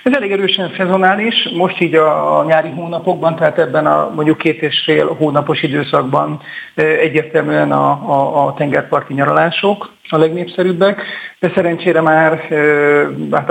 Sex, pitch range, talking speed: male, 145-170 Hz, 135 wpm